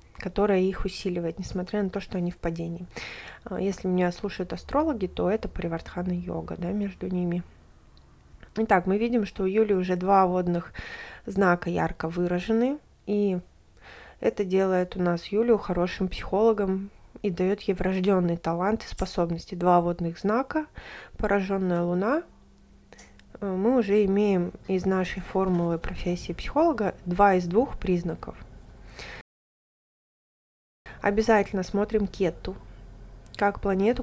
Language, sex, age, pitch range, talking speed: Russian, female, 20-39, 175-210 Hz, 120 wpm